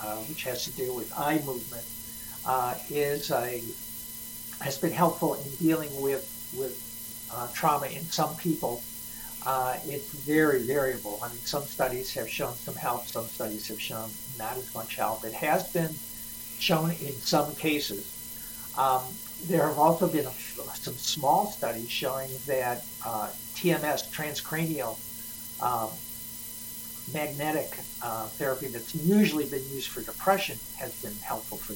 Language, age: English, 60-79